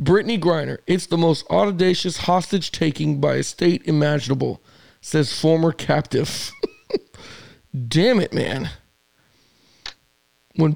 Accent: American